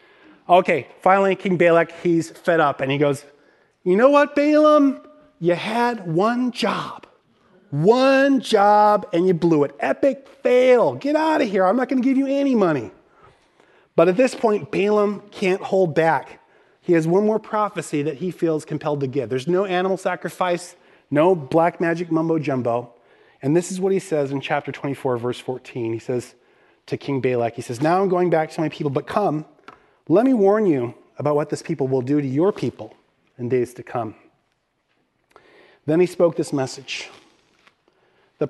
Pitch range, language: 140-195 Hz, English